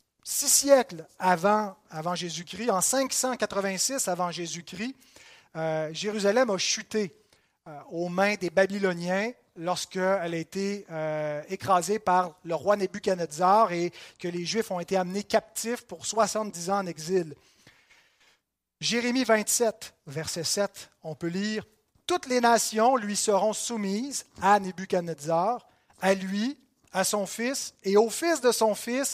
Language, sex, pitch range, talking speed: French, male, 175-220 Hz, 140 wpm